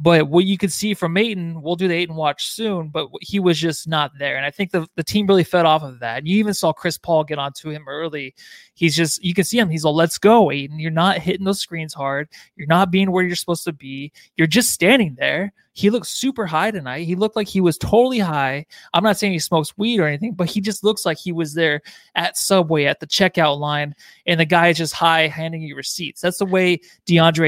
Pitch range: 155-195 Hz